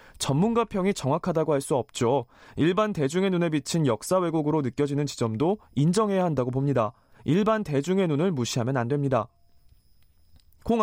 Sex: male